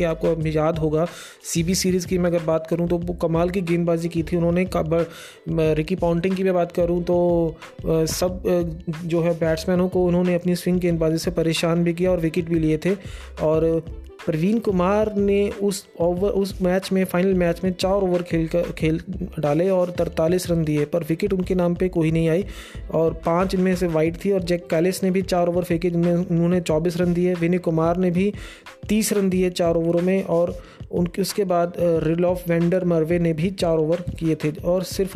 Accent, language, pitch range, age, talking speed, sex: native, Hindi, 165-185 Hz, 20-39, 200 wpm, male